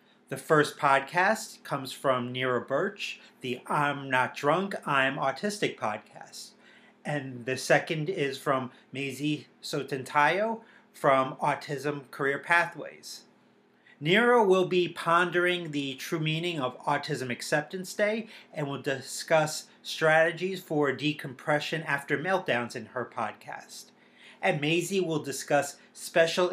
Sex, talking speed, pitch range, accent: male, 120 wpm, 135-175 Hz, American